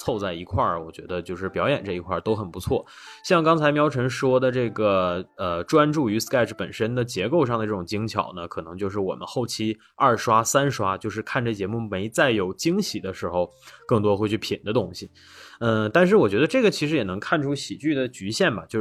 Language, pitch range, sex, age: Chinese, 95-125 Hz, male, 20-39